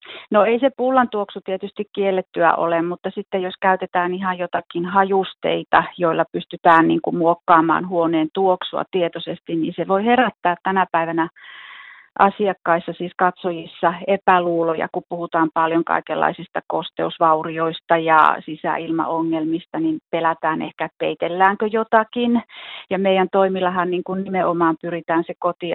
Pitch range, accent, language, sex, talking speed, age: 165-190 Hz, native, Finnish, female, 125 wpm, 40-59